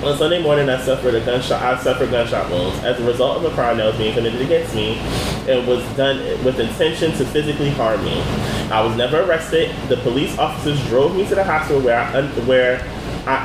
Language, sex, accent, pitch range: English, male, American, 125-165 Hz